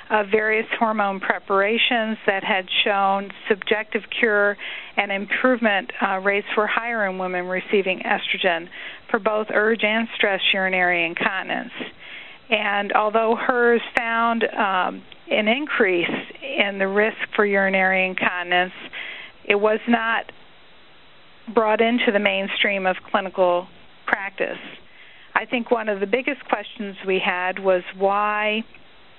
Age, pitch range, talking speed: 40-59, 195-230 Hz, 125 wpm